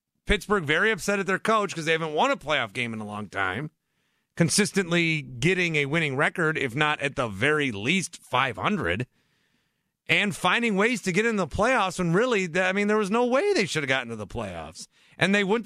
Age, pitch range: 30-49, 120-175 Hz